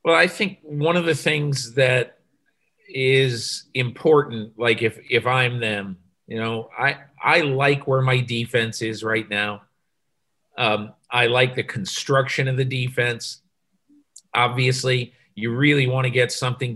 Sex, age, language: male, 40-59, English